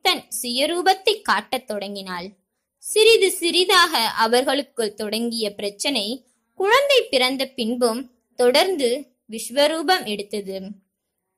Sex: female